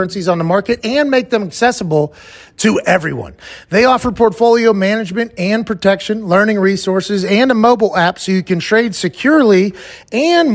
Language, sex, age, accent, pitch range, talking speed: English, male, 30-49, American, 165-225 Hz, 155 wpm